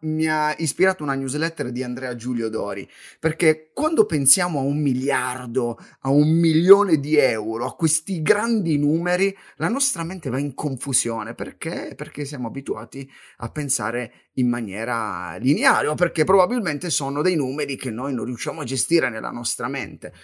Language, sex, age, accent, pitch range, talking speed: Italian, male, 30-49, native, 130-195 Hz, 160 wpm